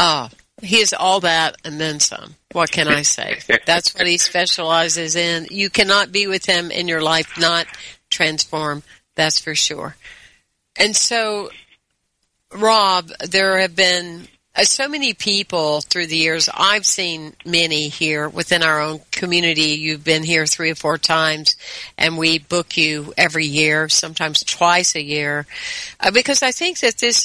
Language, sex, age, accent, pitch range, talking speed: English, female, 50-69, American, 160-200 Hz, 160 wpm